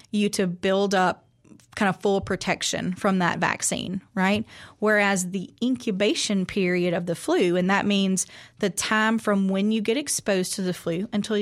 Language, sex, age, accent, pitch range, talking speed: English, female, 30-49, American, 185-215 Hz, 175 wpm